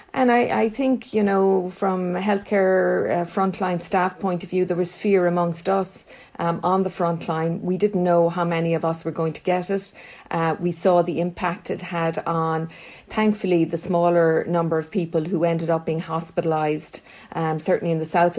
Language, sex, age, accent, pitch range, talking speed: English, female, 40-59, Irish, 165-185 Hz, 195 wpm